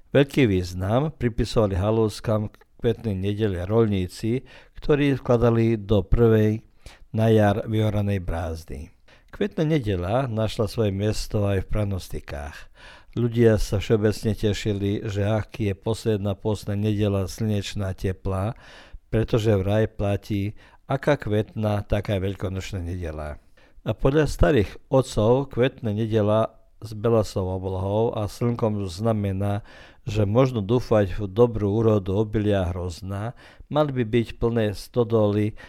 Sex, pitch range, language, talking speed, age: male, 100-110 Hz, Croatian, 120 wpm, 50-69